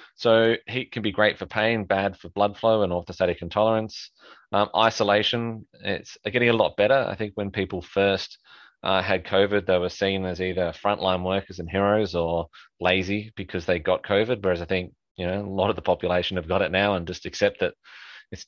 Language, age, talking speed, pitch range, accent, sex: English, 20-39, 205 wpm, 90-115 Hz, Australian, male